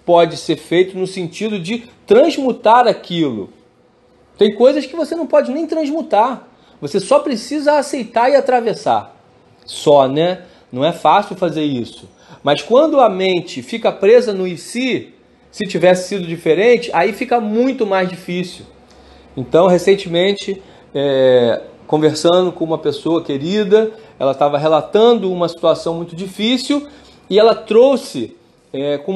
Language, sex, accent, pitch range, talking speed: Portuguese, male, Brazilian, 175-230 Hz, 130 wpm